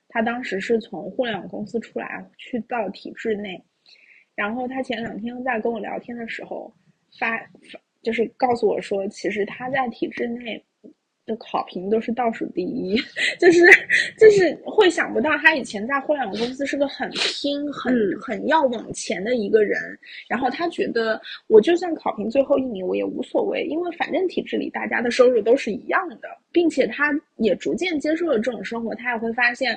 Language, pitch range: Chinese, 220-285 Hz